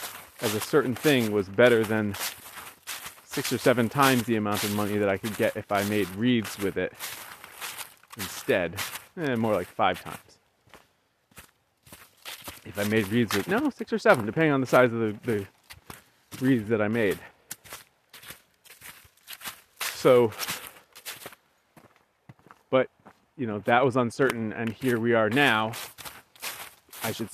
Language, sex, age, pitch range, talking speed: English, male, 30-49, 105-125 Hz, 145 wpm